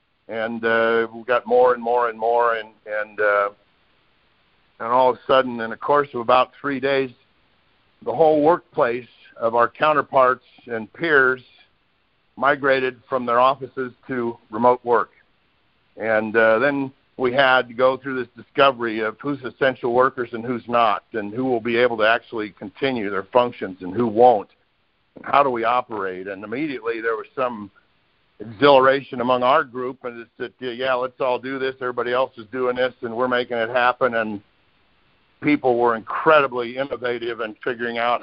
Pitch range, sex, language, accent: 115-135 Hz, male, English, American